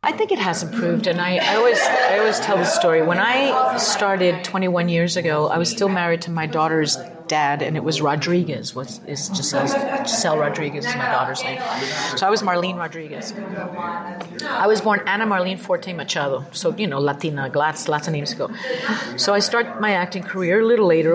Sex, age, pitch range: female, 40-59, 175-235 Hz